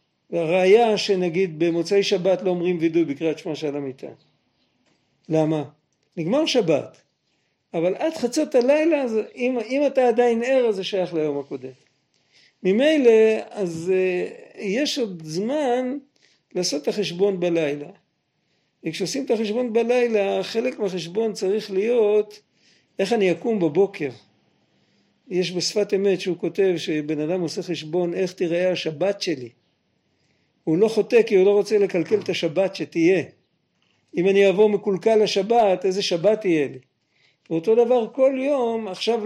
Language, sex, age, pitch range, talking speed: Hebrew, male, 50-69, 170-225 Hz, 135 wpm